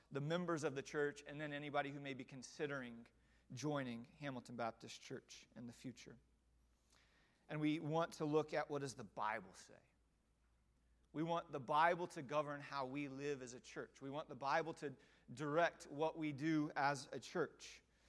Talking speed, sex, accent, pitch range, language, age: 180 wpm, male, American, 140-175 Hz, English, 30-49